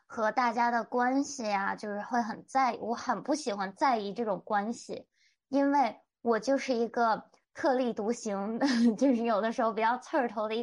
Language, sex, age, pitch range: Chinese, female, 20-39, 210-260 Hz